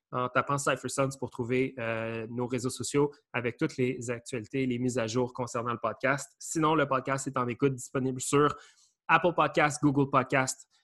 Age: 20-39